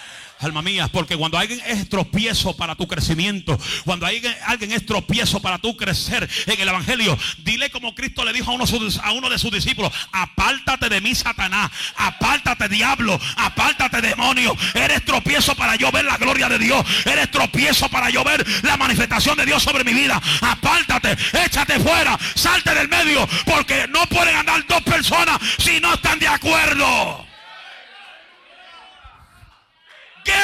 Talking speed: 150 wpm